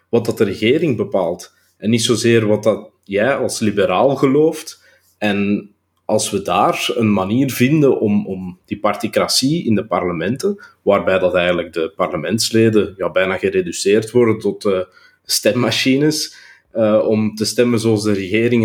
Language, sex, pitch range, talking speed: Dutch, male, 100-120 Hz, 150 wpm